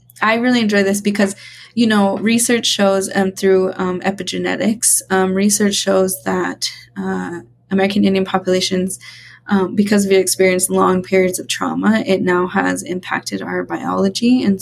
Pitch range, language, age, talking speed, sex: 180-205 Hz, English, 20-39, 150 wpm, female